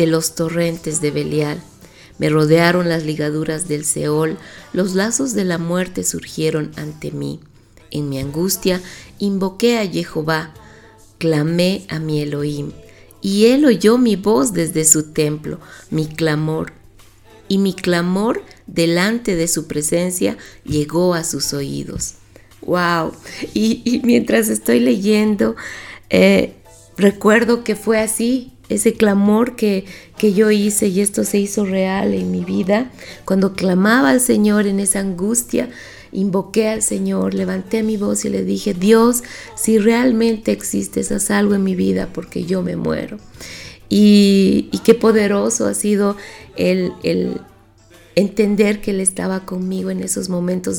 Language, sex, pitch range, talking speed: Spanish, female, 150-210 Hz, 140 wpm